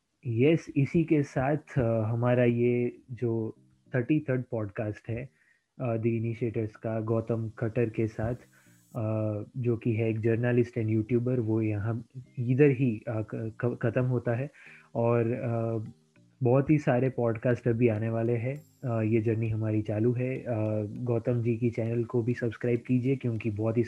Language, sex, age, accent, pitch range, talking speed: Gujarati, male, 20-39, native, 115-130 Hz, 145 wpm